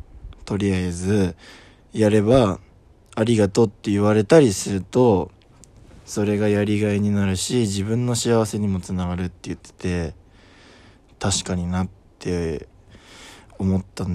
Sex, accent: male, native